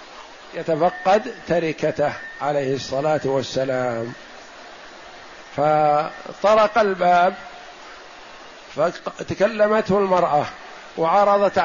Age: 50-69